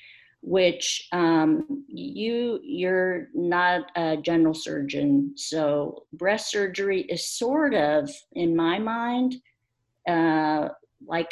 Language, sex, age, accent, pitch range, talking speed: English, female, 50-69, American, 155-180 Hz, 100 wpm